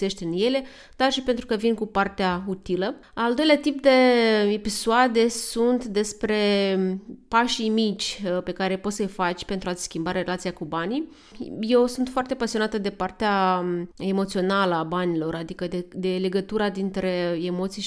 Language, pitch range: Romanian, 185-230 Hz